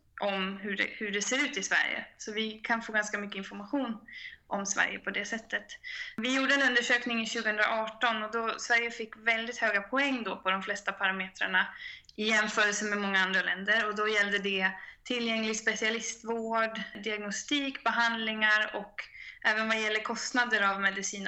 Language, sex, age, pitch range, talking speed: Swedish, female, 20-39, 205-235 Hz, 165 wpm